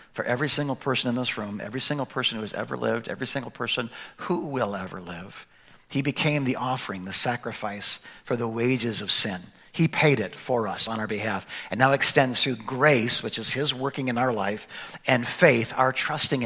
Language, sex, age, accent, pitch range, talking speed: English, male, 50-69, American, 100-125 Hz, 205 wpm